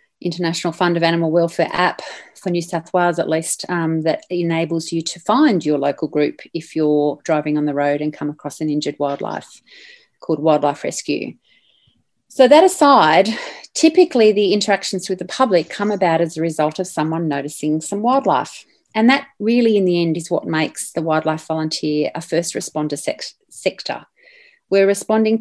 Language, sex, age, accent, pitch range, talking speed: English, female, 30-49, Australian, 160-215 Hz, 170 wpm